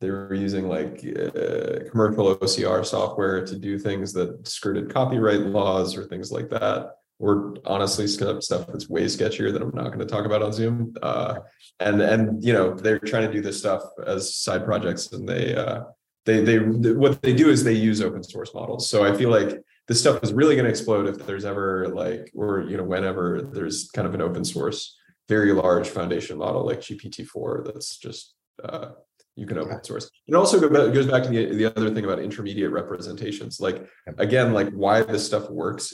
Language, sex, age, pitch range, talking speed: English, male, 20-39, 100-115 Hz, 195 wpm